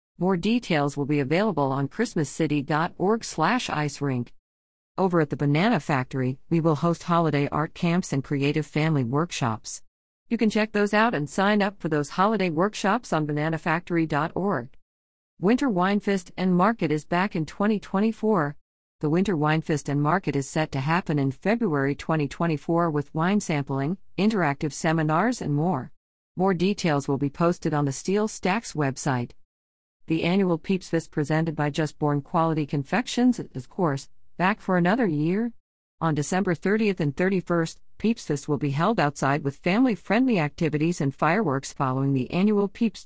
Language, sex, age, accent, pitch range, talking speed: English, female, 50-69, American, 145-195 Hz, 160 wpm